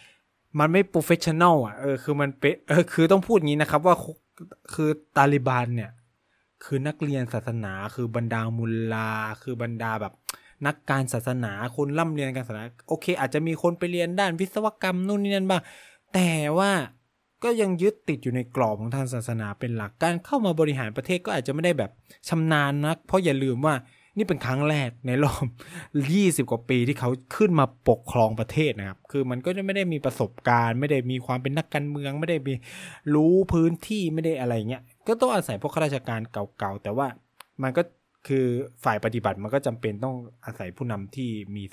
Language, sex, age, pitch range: Thai, male, 20-39, 115-160 Hz